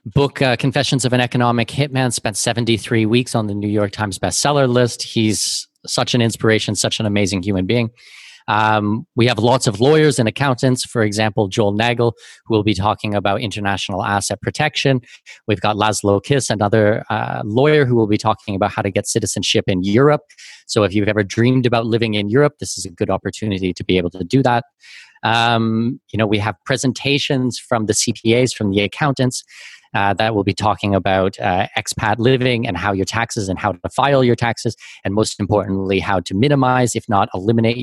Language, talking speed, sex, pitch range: English, 195 wpm, male, 100-125 Hz